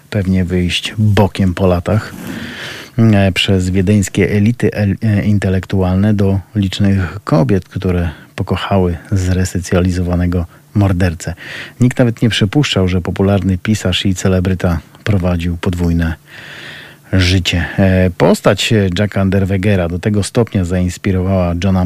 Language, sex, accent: Polish, male, native